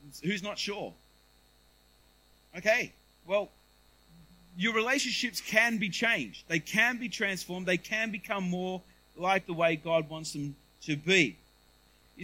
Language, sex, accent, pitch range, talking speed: English, male, Australian, 145-190 Hz, 130 wpm